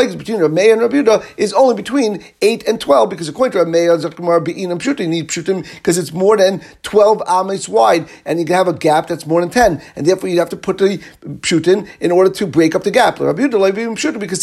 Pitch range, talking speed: 170-220 Hz, 210 wpm